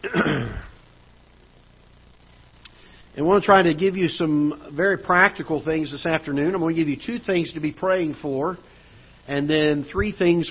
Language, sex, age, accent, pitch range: English, male, 50-69, American, 130-160 Hz